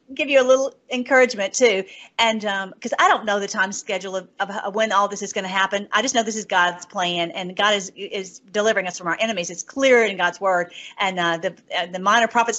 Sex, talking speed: female, 250 wpm